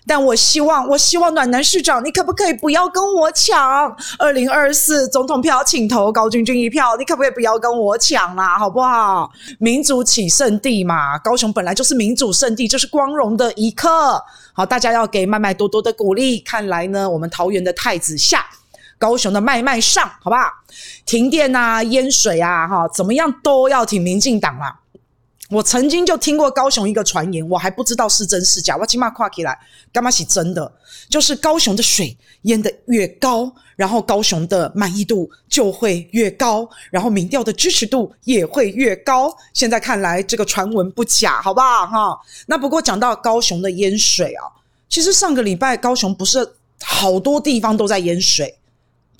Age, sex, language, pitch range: 20-39, female, Chinese, 190-265 Hz